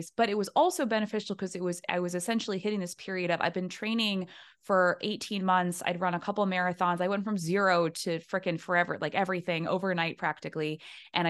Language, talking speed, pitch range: English, 205 wpm, 175-215 Hz